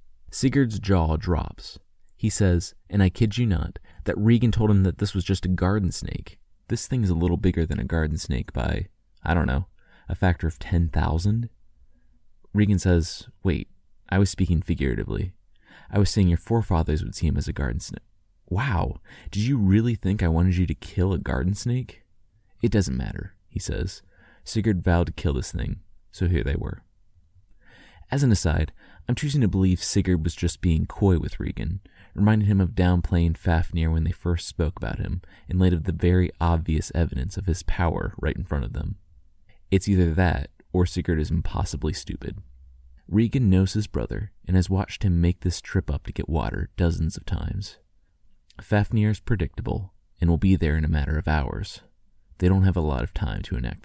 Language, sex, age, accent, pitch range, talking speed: English, male, 30-49, American, 80-100 Hz, 195 wpm